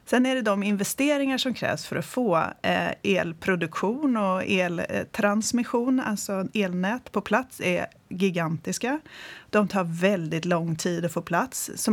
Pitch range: 185-235 Hz